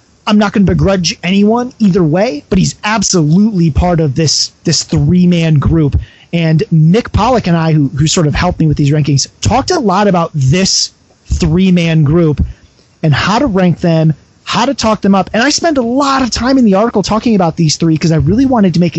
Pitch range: 160-205 Hz